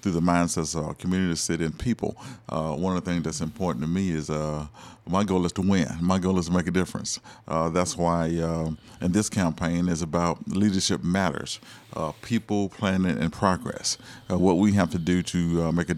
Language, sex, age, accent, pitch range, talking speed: English, male, 50-69, American, 85-95 Hz, 220 wpm